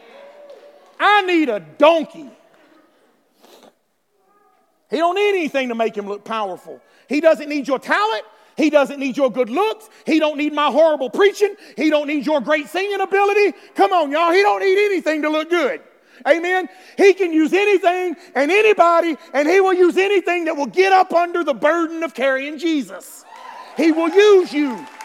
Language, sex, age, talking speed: English, male, 40-59, 175 wpm